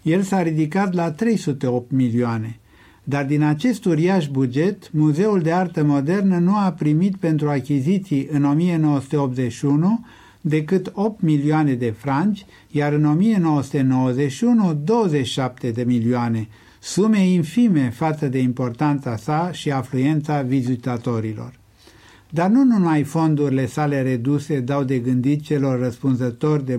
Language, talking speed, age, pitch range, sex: Romanian, 120 wpm, 60-79, 130-175 Hz, male